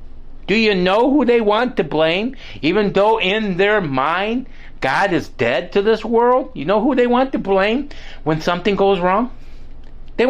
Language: English